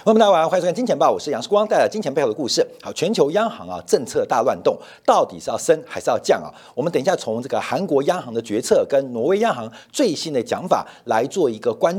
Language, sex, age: Chinese, male, 50-69